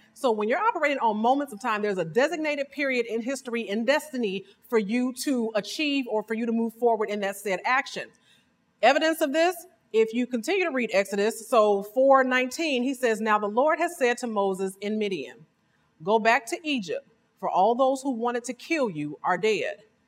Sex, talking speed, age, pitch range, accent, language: female, 195 wpm, 30-49, 225-320 Hz, American, English